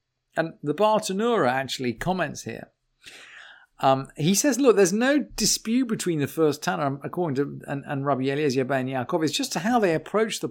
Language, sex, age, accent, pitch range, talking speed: English, male, 40-59, British, 135-185 Hz, 185 wpm